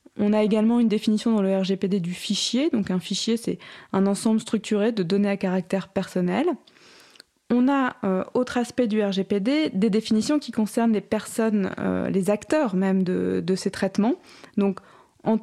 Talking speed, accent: 175 wpm, French